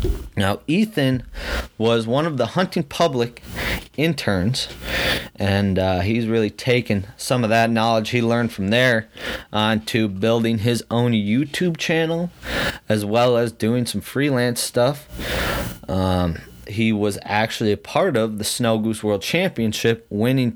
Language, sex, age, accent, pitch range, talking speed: English, male, 30-49, American, 100-120 Hz, 145 wpm